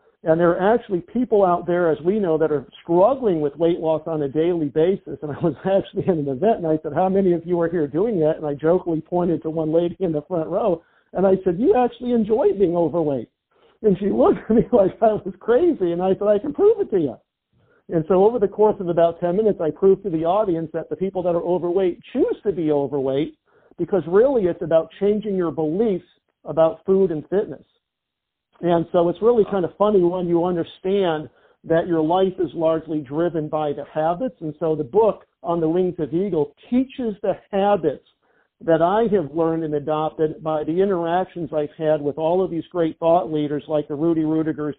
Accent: American